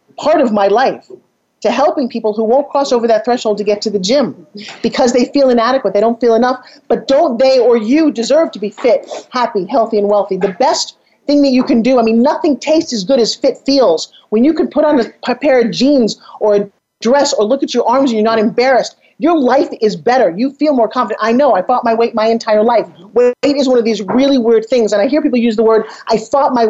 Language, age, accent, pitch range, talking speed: English, 40-59, American, 215-265 Hz, 250 wpm